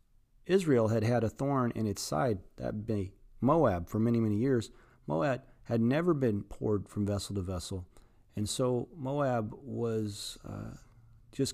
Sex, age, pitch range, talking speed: male, 40-59, 100-125 Hz, 155 wpm